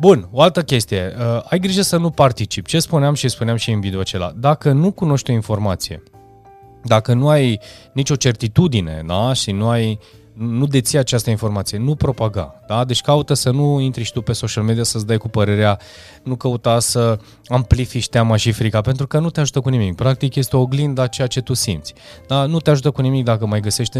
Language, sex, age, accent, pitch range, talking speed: Romanian, male, 20-39, native, 105-130 Hz, 215 wpm